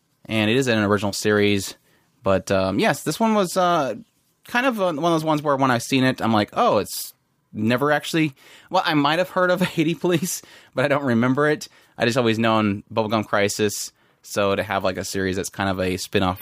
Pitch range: 95-120 Hz